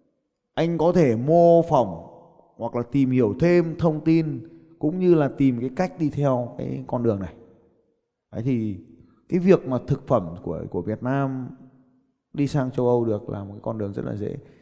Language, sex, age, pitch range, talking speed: Vietnamese, male, 20-39, 125-155 Hz, 195 wpm